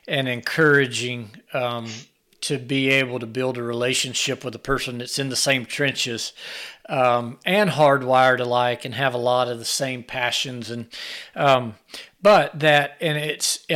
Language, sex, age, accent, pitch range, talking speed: English, male, 40-59, American, 130-160 Hz, 155 wpm